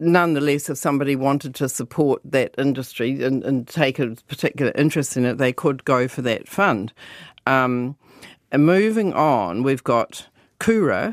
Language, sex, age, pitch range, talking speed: English, female, 50-69, 125-155 Hz, 155 wpm